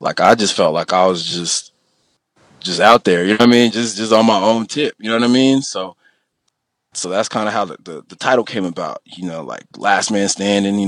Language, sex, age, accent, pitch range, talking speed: English, male, 20-39, American, 90-110 Hz, 255 wpm